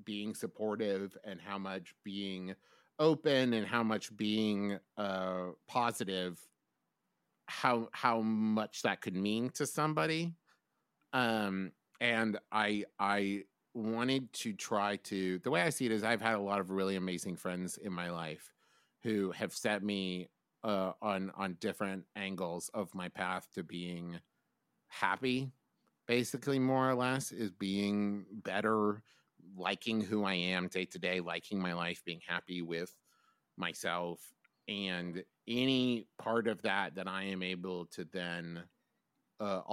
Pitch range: 90-115 Hz